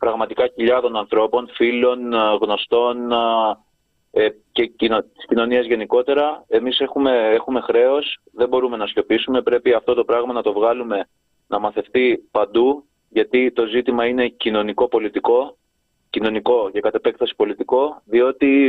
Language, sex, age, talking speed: Greek, male, 20-39, 120 wpm